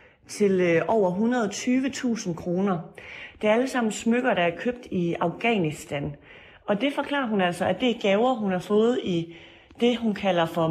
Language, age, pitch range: Danish, 30-49, 170-225 Hz